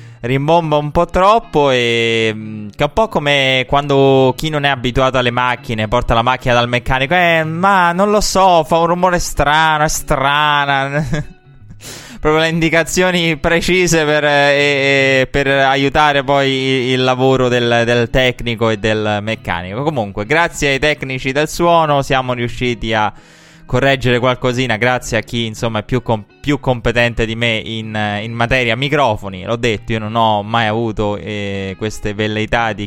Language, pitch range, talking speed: Italian, 110-145 Hz, 160 wpm